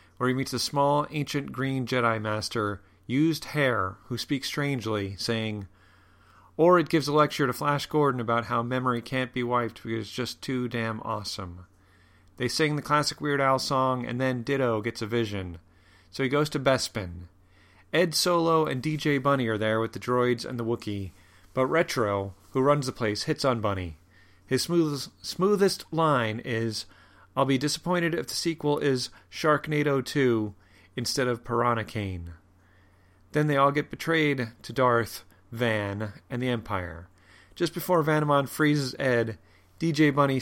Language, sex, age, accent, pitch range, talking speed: English, male, 30-49, American, 100-140 Hz, 165 wpm